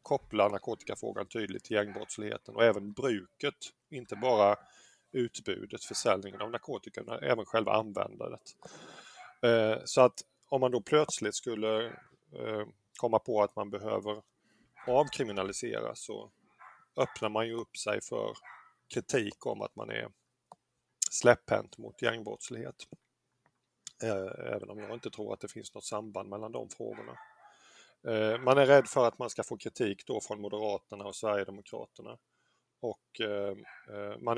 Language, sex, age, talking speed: Swedish, male, 30-49, 130 wpm